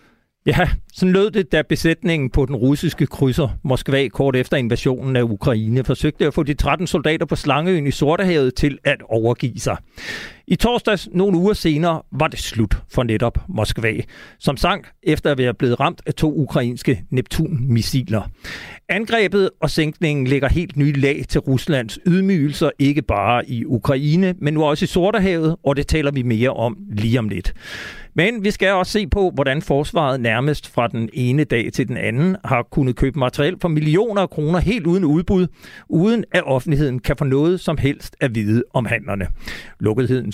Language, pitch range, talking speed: Danish, 125-170 Hz, 180 wpm